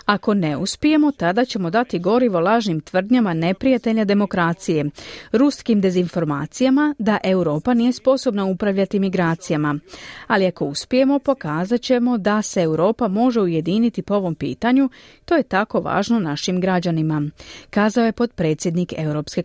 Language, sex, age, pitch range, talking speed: Croatian, female, 30-49, 170-235 Hz, 130 wpm